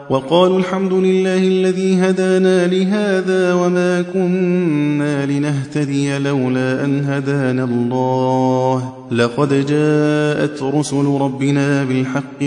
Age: 30-49